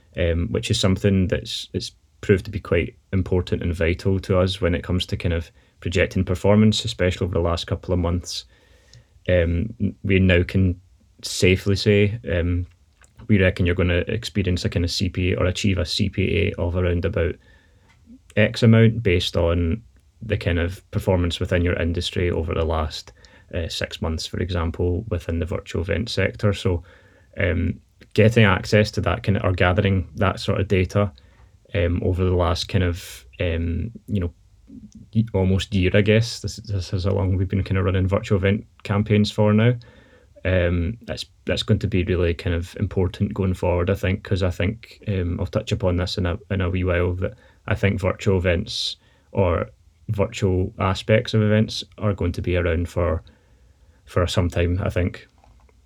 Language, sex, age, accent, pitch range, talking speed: English, male, 20-39, British, 90-105 Hz, 180 wpm